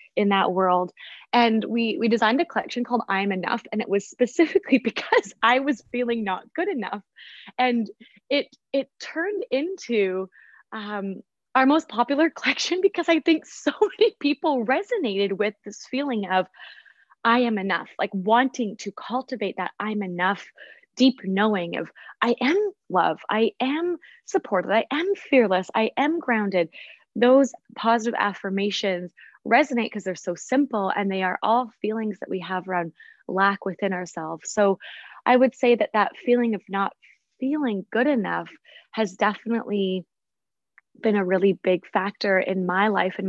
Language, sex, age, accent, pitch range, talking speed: English, female, 20-39, American, 195-260 Hz, 155 wpm